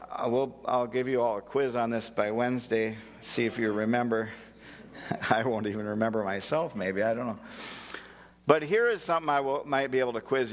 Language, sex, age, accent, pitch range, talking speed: English, male, 50-69, American, 105-135 Hz, 205 wpm